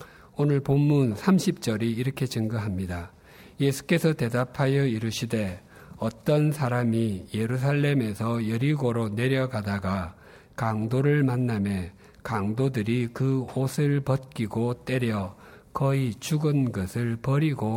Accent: native